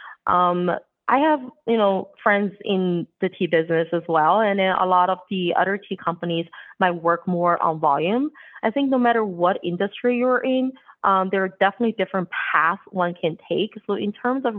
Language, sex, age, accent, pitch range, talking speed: English, female, 20-39, American, 165-210 Hz, 195 wpm